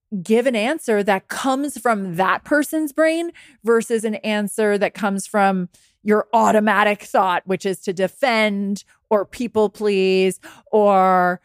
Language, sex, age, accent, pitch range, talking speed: English, female, 20-39, American, 190-245 Hz, 135 wpm